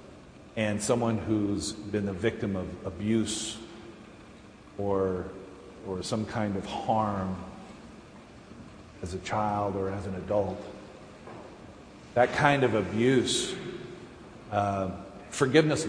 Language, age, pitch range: English, 40-59, 105-140 Hz